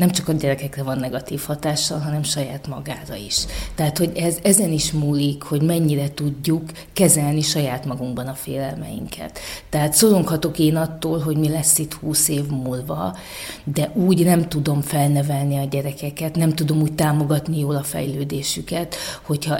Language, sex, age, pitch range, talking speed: Hungarian, female, 30-49, 145-170 Hz, 155 wpm